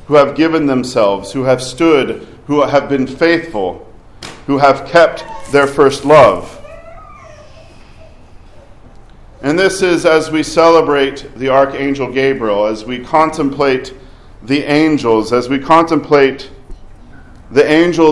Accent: American